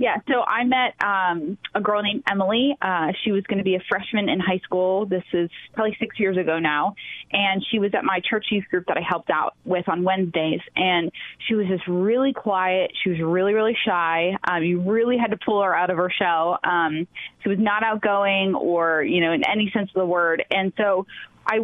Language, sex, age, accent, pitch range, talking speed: English, female, 20-39, American, 180-215 Hz, 225 wpm